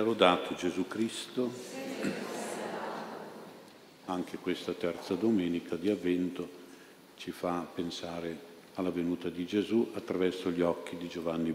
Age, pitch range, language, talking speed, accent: 50-69, 85-100 Hz, Italian, 105 wpm, native